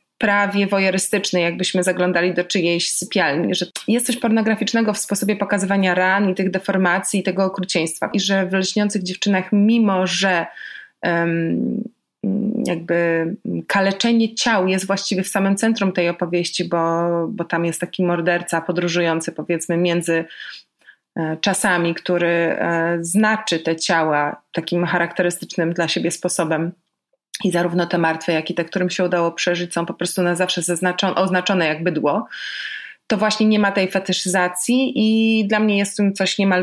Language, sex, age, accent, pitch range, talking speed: Polish, female, 20-39, native, 175-205 Hz, 145 wpm